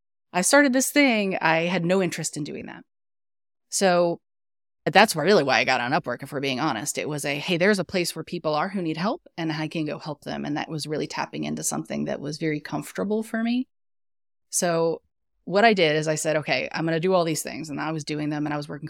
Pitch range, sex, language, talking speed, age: 150-190 Hz, female, English, 250 wpm, 30-49